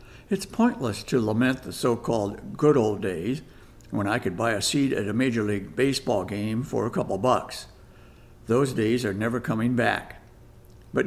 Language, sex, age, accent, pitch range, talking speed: English, male, 60-79, American, 110-140 Hz, 175 wpm